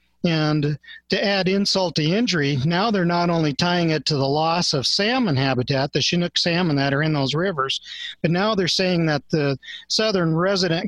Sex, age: male, 40-59